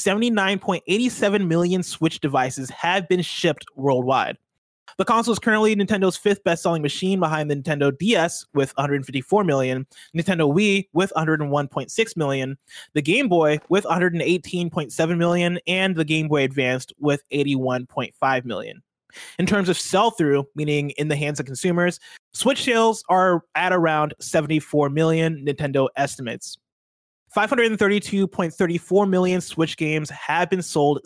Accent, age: American, 20-39